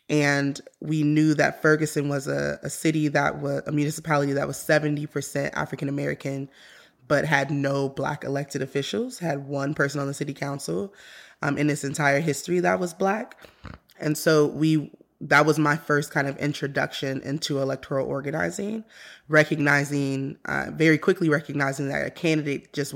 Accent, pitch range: American, 135-150 Hz